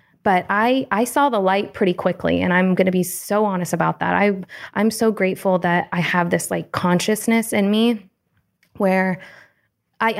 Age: 20-39